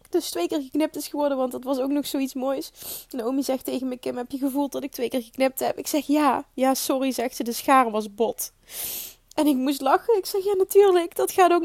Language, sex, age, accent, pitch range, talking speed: Dutch, female, 20-39, Dutch, 255-300 Hz, 250 wpm